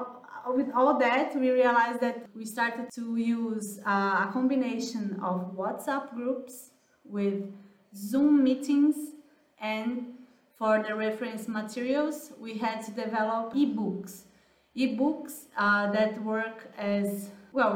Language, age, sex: English, 20-39, female